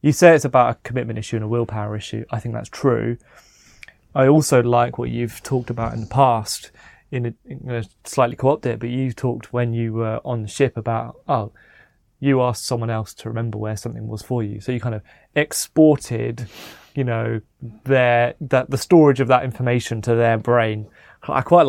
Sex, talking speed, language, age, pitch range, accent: male, 200 wpm, English, 20-39, 115-130 Hz, British